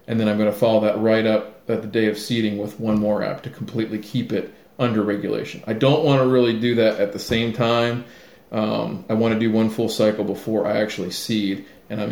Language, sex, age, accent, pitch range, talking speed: English, male, 40-59, American, 105-120 Hz, 245 wpm